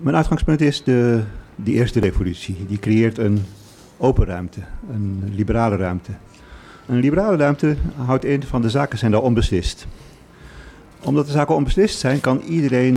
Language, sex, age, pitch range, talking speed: Dutch, male, 50-69, 100-135 Hz, 155 wpm